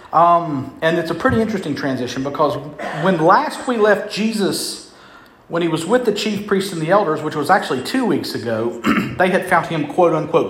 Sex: male